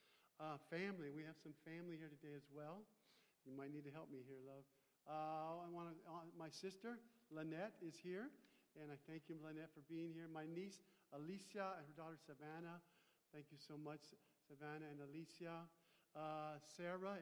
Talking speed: 180 wpm